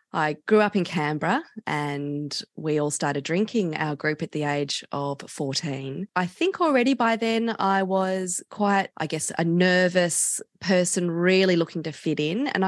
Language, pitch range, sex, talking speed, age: English, 150-190 Hz, female, 170 wpm, 20-39